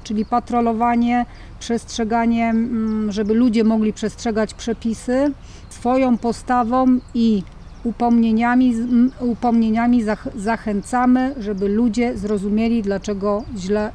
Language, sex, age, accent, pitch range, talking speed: English, female, 40-59, Polish, 215-250 Hz, 80 wpm